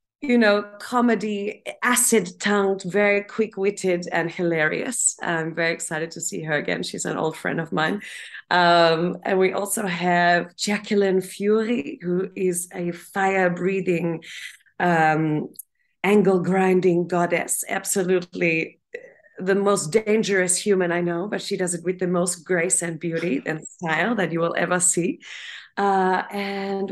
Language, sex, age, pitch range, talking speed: English, female, 30-49, 175-205 Hz, 135 wpm